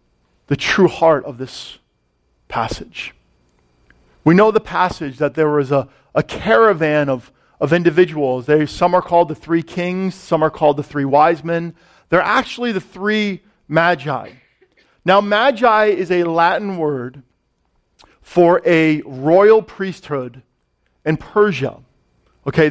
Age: 40-59